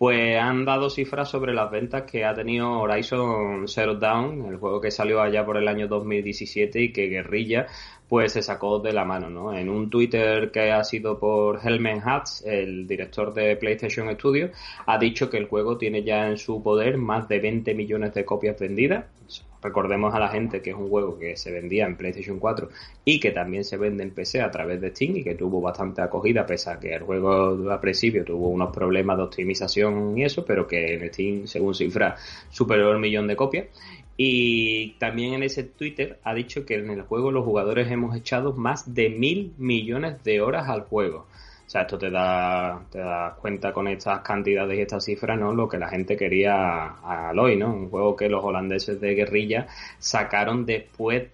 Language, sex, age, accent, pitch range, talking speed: Spanish, male, 20-39, Spanish, 100-115 Hz, 200 wpm